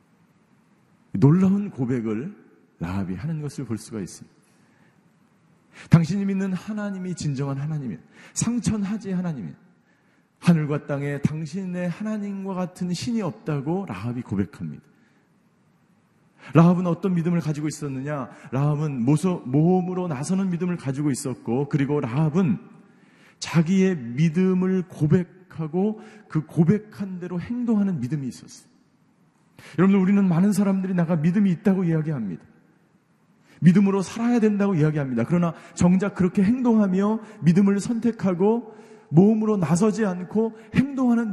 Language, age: Korean, 40-59